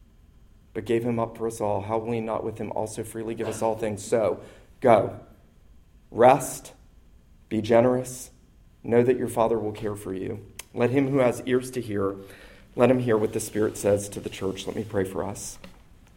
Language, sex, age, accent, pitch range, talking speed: English, male, 40-59, American, 115-140 Hz, 200 wpm